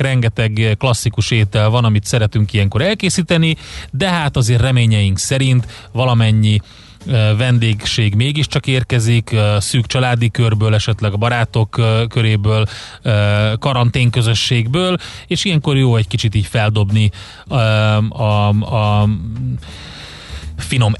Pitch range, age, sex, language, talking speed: 110-135 Hz, 30-49, male, Hungarian, 115 wpm